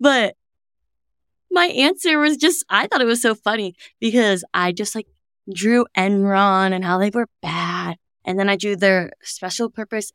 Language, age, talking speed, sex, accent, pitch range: English, 20-39, 170 wpm, female, American, 185-240 Hz